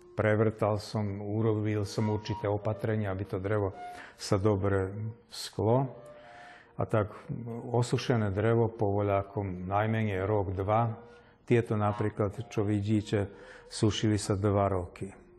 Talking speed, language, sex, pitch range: 115 wpm, Slovak, male, 100-115 Hz